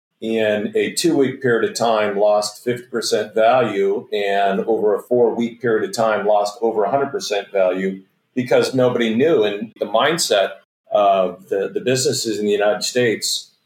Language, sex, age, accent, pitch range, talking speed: English, male, 50-69, American, 105-130 Hz, 150 wpm